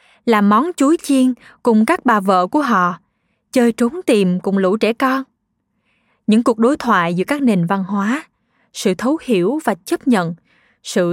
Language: Vietnamese